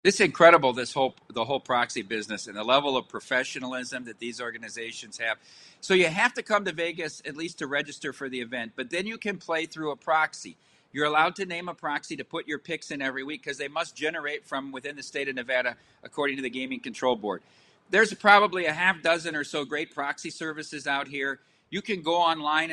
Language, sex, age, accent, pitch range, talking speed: English, male, 50-69, American, 145-180 Hz, 220 wpm